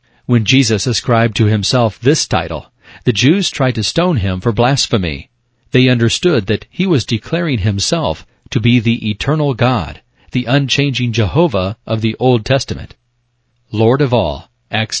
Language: English